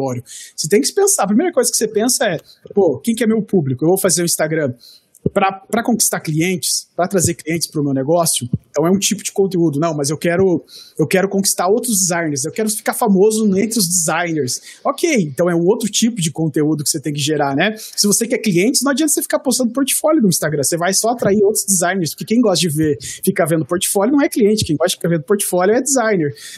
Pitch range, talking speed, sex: 165-215 Hz, 235 wpm, male